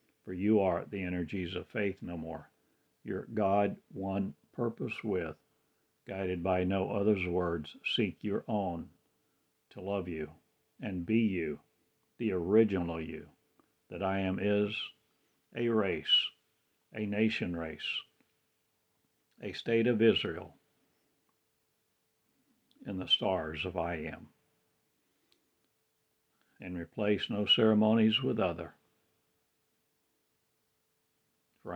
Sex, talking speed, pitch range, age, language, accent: male, 105 wpm, 90-105 Hz, 60-79, English, American